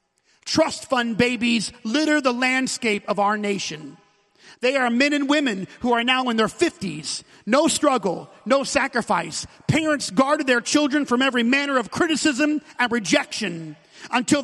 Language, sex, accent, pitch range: English, male, American, 220-295 Hz